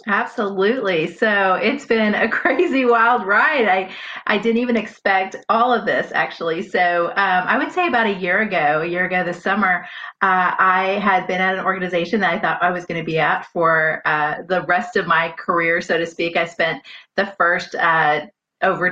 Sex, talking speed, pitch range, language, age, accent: female, 200 wpm, 175-215 Hz, English, 30-49, American